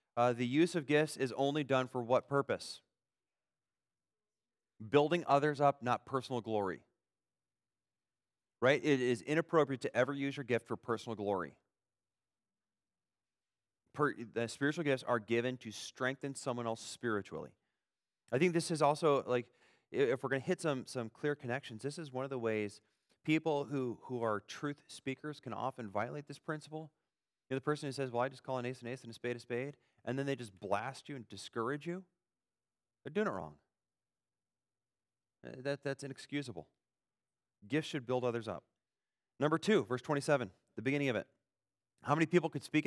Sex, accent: male, American